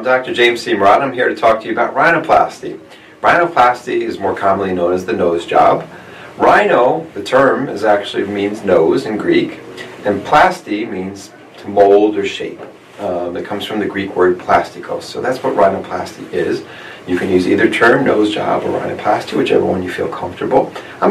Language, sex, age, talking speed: English, male, 40-59, 190 wpm